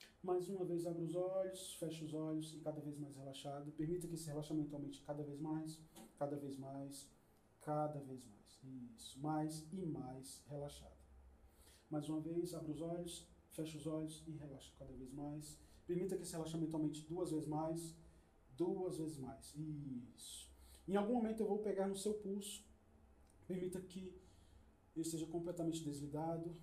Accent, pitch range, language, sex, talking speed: Brazilian, 130-170 Hz, English, male, 165 wpm